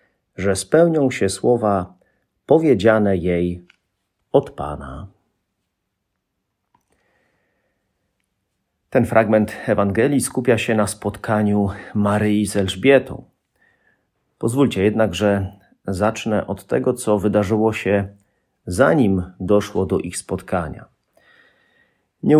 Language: Polish